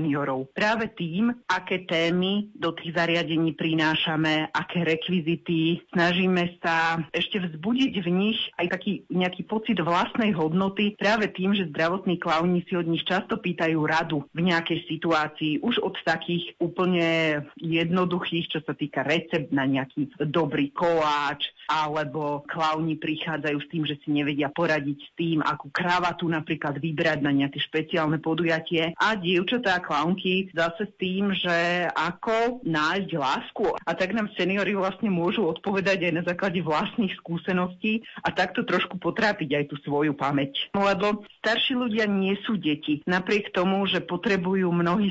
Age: 40-59